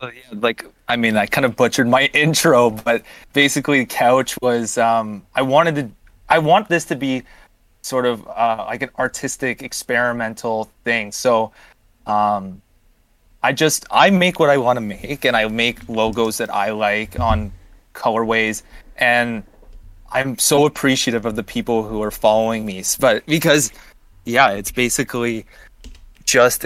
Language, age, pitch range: English, 20-39, 105-125 Hz